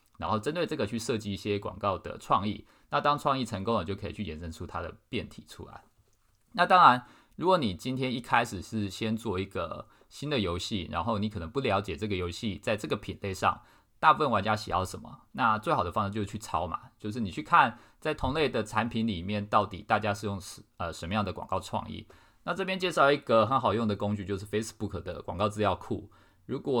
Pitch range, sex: 95-110 Hz, male